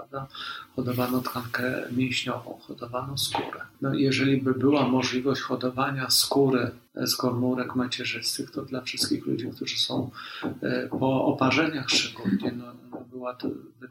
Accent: native